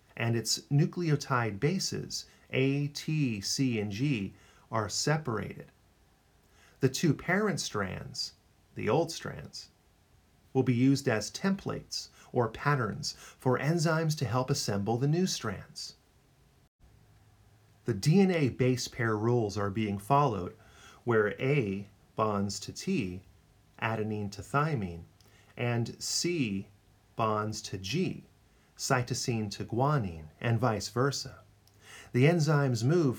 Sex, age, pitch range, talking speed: male, 40-59, 105-140 Hz, 115 wpm